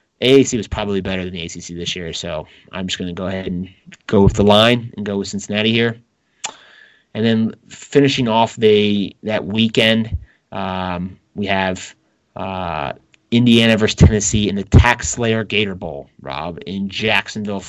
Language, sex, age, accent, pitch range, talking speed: English, male, 30-49, American, 95-110 Hz, 165 wpm